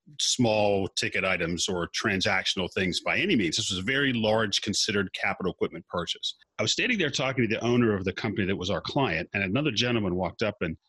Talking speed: 215 wpm